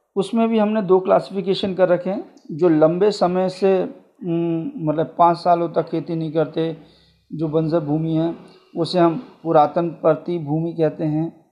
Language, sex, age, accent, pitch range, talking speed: Hindi, male, 50-69, native, 155-200 Hz, 155 wpm